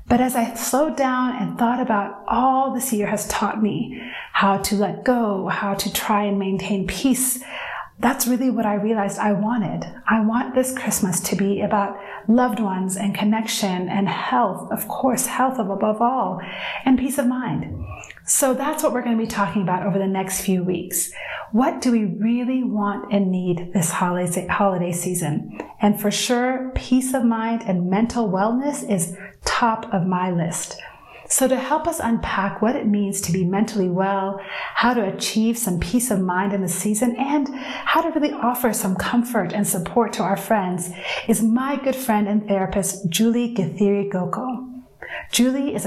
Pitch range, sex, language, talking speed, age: 195-245 Hz, female, English, 175 wpm, 30-49